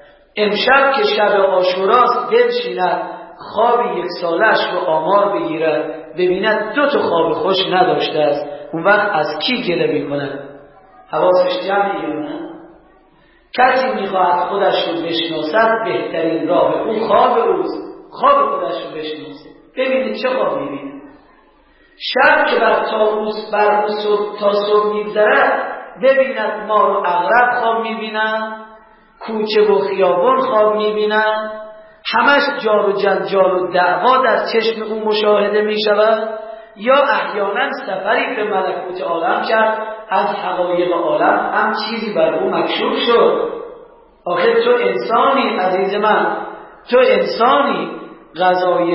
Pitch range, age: 180-240 Hz, 40-59